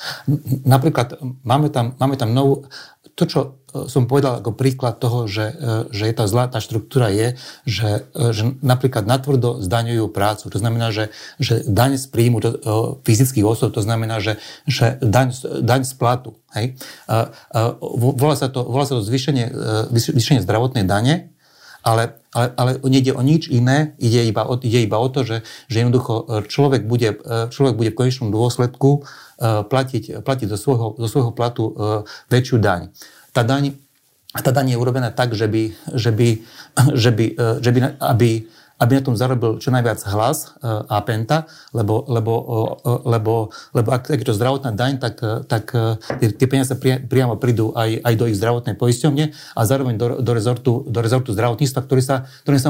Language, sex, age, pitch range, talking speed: Slovak, male, 40-59, 115-135 Hz, 160 wpm